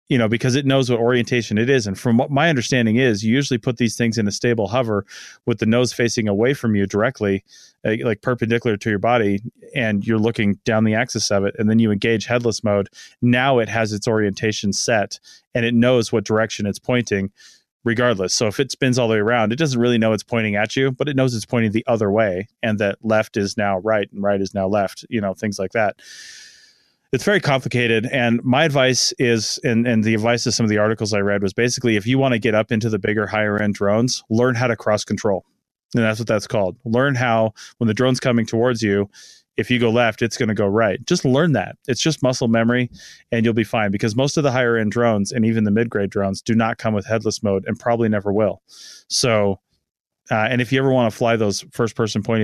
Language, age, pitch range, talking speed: English, 30-49, 105-120 Hz, 240 wpm